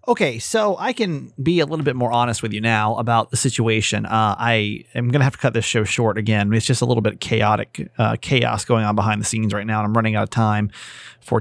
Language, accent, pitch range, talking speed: English, American, 110-130 Hz, 265 wpm